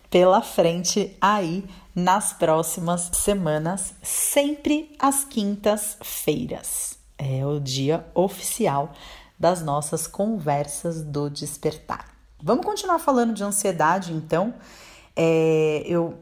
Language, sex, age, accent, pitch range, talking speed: Portuguese, female, 30-49, Brazilian, 160-190 Hz, 95 wpm